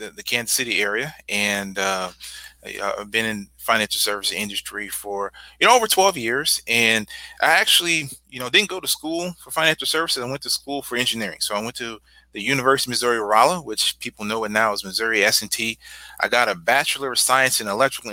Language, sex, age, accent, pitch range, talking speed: English, male, 30-49, American, 110-140 Hz, 200 wpm